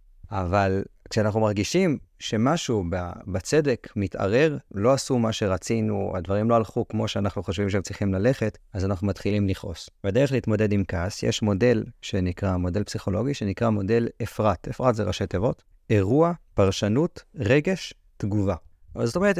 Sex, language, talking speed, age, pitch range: male, Hebrew, 140 wpm, 30-49, 100-140 Hz